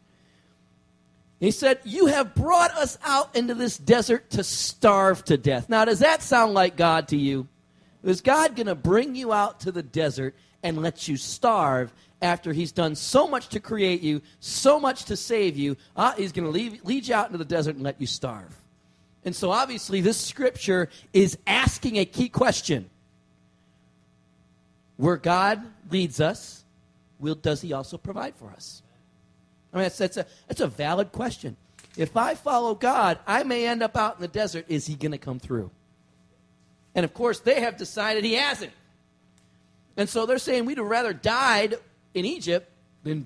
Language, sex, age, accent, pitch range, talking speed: English, male, 40-59, American, 140-225 Hz, 180 wpm